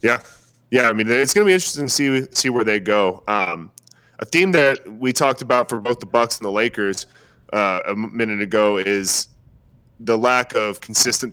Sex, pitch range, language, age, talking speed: male, 110-130 Hz, English, 30-49, 200 wpm